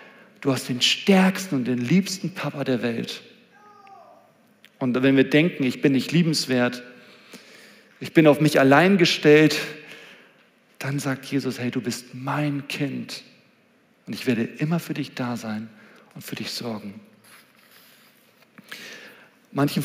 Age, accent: 40-59, German